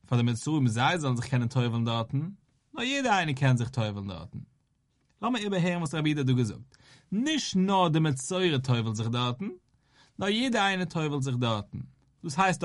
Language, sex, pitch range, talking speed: English, male, 130-180 Hz, 185 wpm